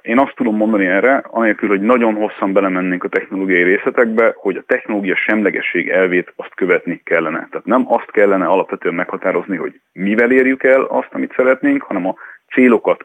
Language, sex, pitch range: Hungarian, male, 95-130 Hz